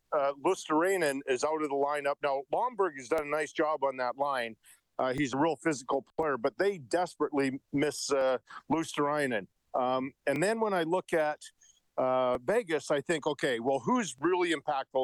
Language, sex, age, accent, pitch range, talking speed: English, male, 50-69, American, 135-165 Hz, 175 wpm